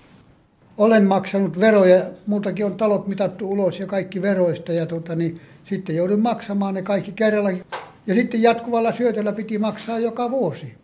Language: Finnish